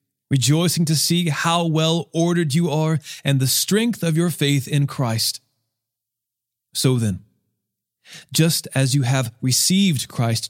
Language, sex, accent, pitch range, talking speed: English, male, American, 120-160 Hz, 130 wpm